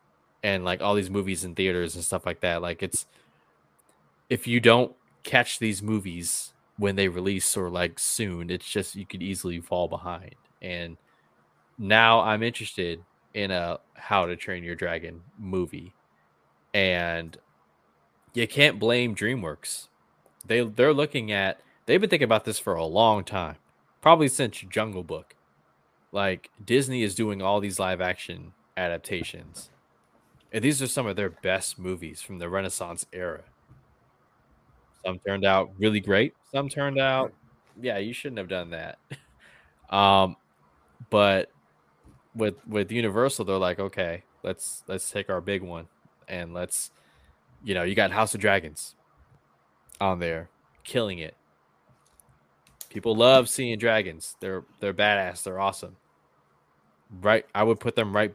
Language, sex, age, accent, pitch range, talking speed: English, male, 20-39, American, 85-110 Hz, 145 wpm